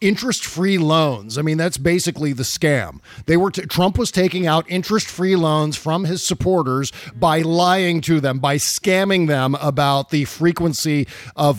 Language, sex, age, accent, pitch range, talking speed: English, male, 50-69, American, 130-175 Hz, 160 wpm